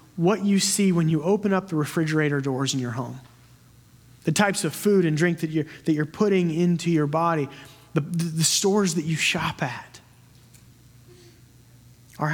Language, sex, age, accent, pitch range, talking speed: English, male, 30-49, American, 145-195 Hz, 170 wpm